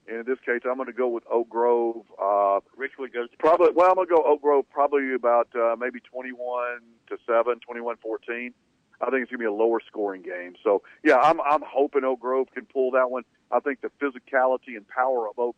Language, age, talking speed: English, 50-69, 225 wpm